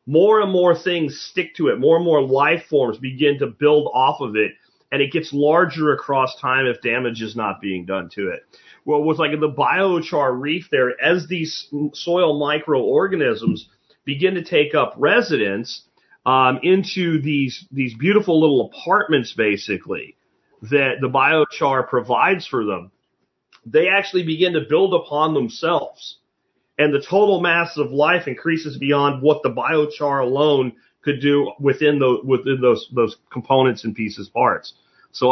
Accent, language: American, English